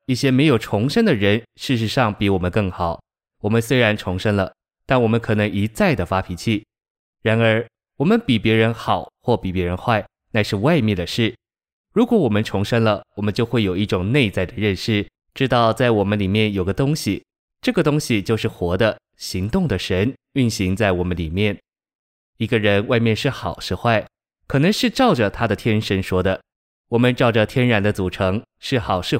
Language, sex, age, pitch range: Chinese, male, 20-39, 100-125 Hz